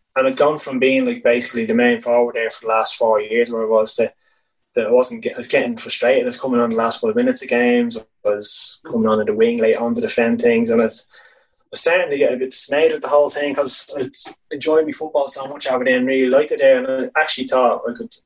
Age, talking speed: 20-39, 275 wpm